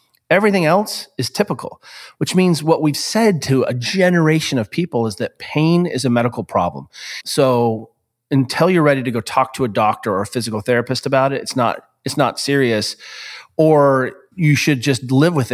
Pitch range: 125-155 Hz